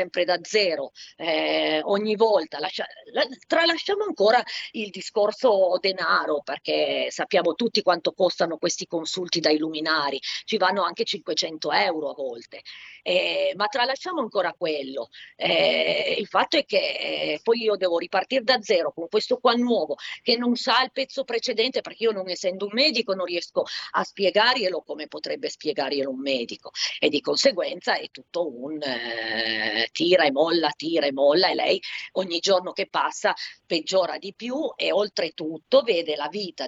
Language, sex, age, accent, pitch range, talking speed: Italian, female, 40-59, native, 165-230 Hz, 160 wpm